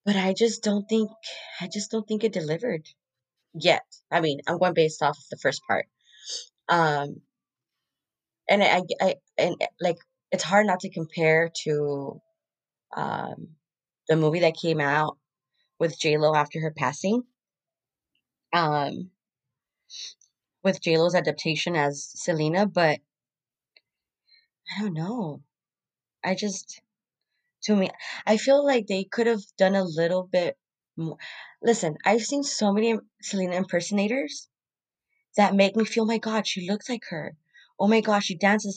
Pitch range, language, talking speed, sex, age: 160-220 Hz, English, 140 wpm, female, 20-39